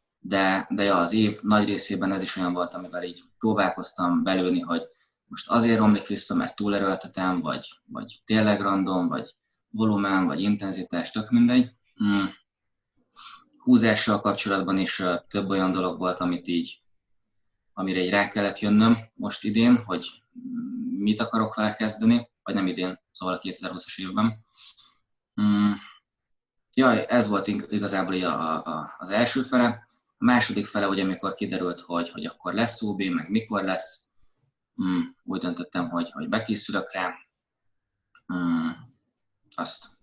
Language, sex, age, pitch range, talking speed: Hungarian, male, 20-39, 95-110 Hz, 145 wpm